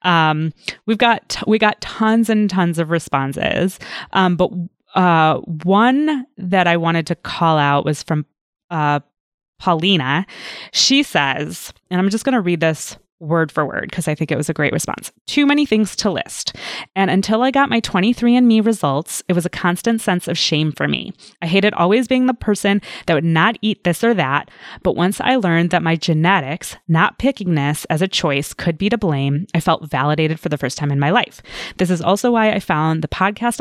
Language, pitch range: English, 160-205 Hz